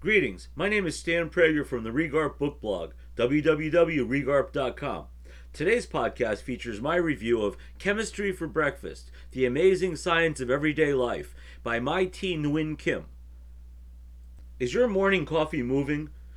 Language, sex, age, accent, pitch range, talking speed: English, male, 50-69, American, 115-170 Hz, 135 wpm